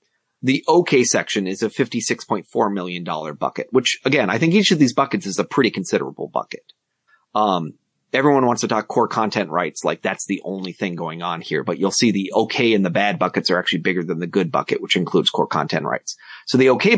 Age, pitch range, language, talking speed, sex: 30-49, 100-125 Hz, English, 215 wpm, male